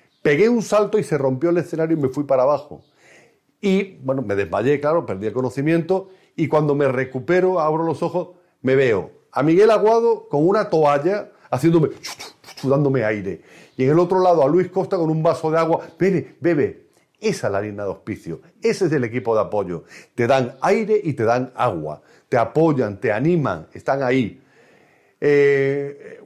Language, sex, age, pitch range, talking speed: Spanish, male, 40-59, 135-175 Hz, 185 wpm